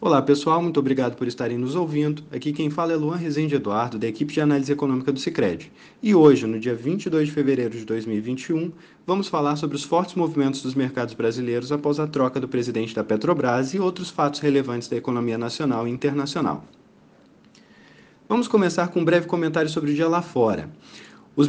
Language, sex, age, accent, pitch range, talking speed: Portuguese, male, 20-39, Brazilian, 125-155 Hz, 190 wpm